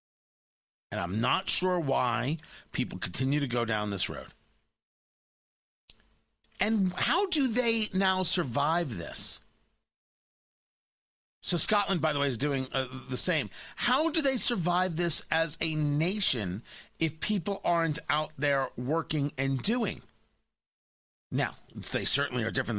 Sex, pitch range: male, 135-210 Hz